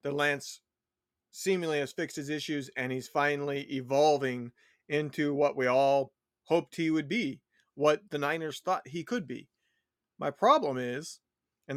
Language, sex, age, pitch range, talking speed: English, male, 40-59, 145-180 Hz, 155 wpm